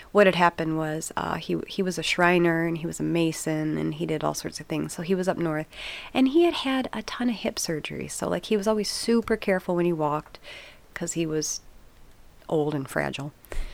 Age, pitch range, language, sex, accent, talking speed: 30-49, 145-175 Hz, English, female, American, 225 wpm